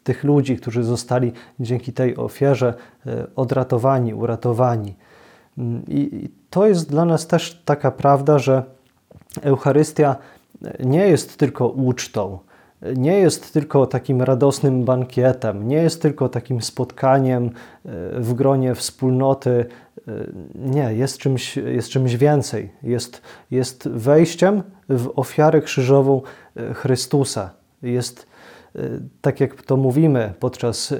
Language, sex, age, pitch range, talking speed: Polish, male, 20-39, 125-140 Hz, 110 wpm